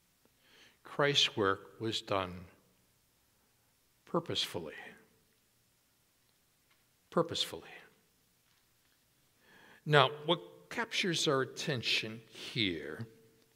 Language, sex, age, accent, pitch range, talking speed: English, male, 60-79, American, 135-185 Hz, 55 wpm